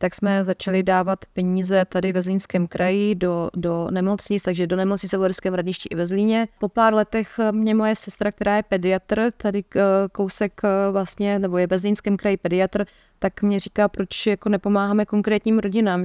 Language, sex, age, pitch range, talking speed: Czech, female, 20-39, 185-210 Hz, 170 wpm